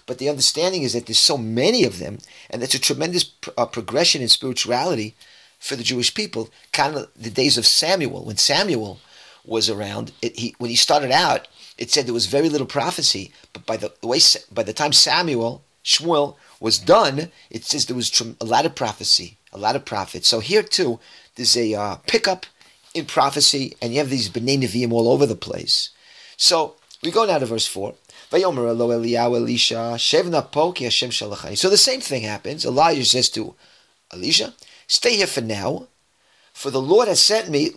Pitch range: 115-165 Hz